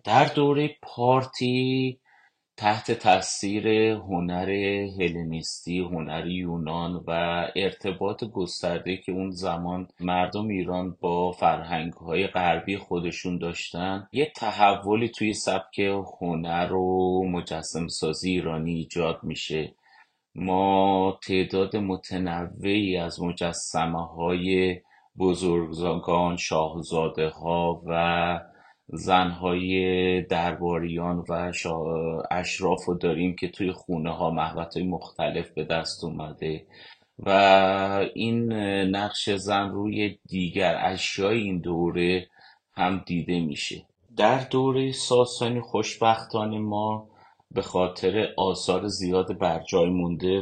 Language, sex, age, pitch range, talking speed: Persian, male, 30-49, 85-100 Hz, 95 wpm